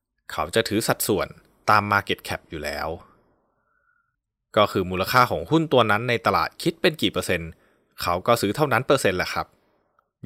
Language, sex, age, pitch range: Thai, male, 20-39, 90-120 Hz